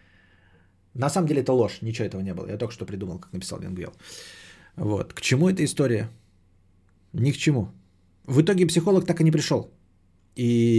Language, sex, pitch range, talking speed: Bulgarian, male, 95-135 Hz, 180 wpm